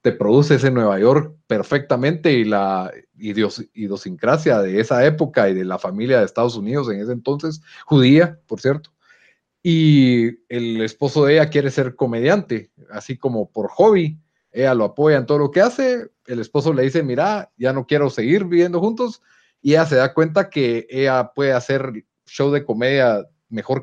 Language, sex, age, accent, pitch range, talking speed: Spanish, male, 30-49, Mexican, 115-150 Hz, 175 wpm